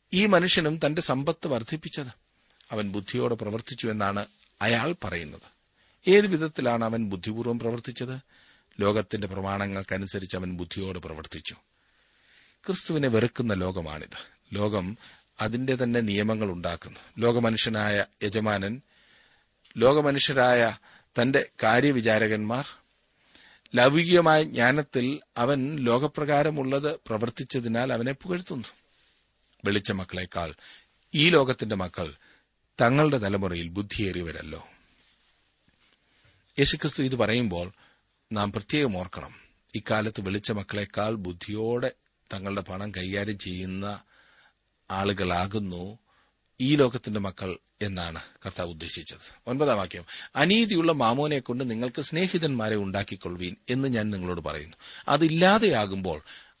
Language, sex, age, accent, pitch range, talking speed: Malayalam, male, 40-59, native, 95-135 Hz, 80 wpm